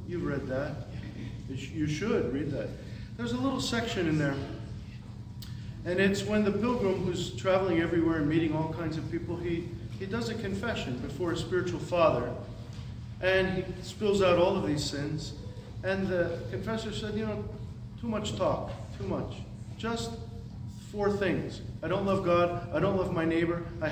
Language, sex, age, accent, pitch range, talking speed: English, male, 40-59, American, 115-175 Hz, 170 wpm